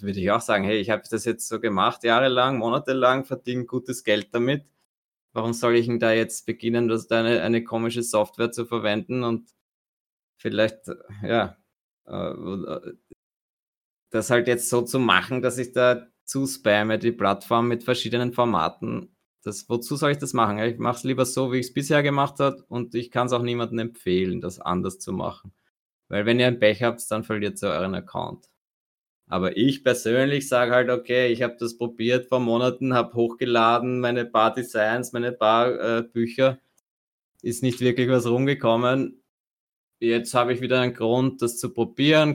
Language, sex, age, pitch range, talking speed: German, male, 20-39, 115-125 Hz, 175 wpm